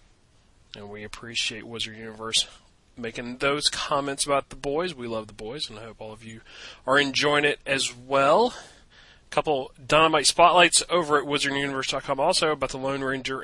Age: 30-49